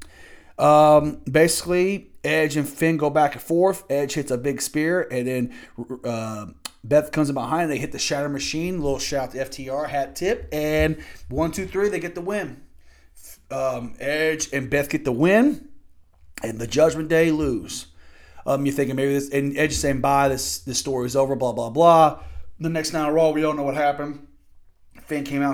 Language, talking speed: English, 195 wpm